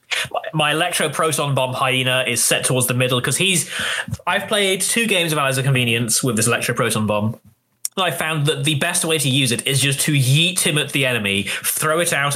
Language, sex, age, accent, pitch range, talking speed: English, male, 20-39, British, 115-140 Hz, 220 wpm